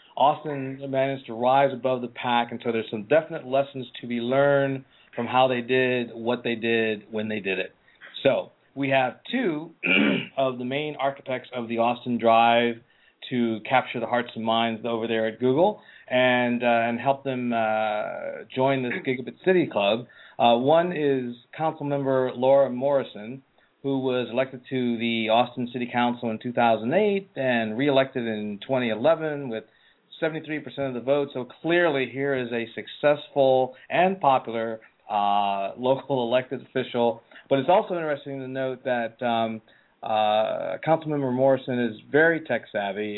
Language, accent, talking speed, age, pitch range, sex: English, American, 155 wpm, 40-59, 115-135 Hz, male